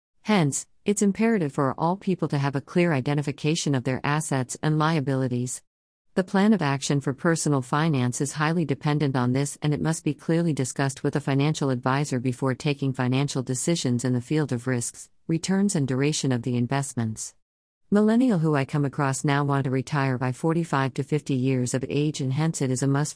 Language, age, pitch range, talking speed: English, 50-69, 130-160 Hz, 195 wpm